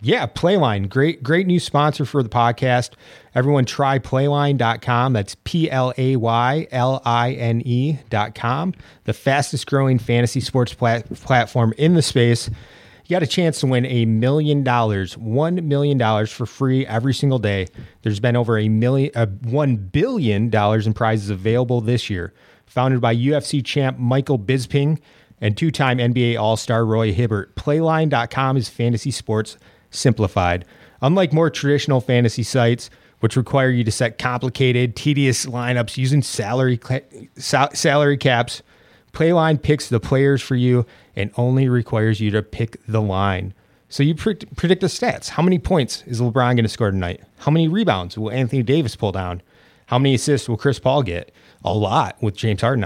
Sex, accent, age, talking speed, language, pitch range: male, American, 30-49, 165 wpm, English, 110-140 Hz